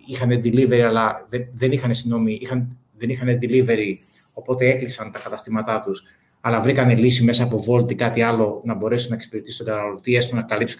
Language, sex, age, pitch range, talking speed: Greek, male, 30-49, 120-150 Hz, 190 wpm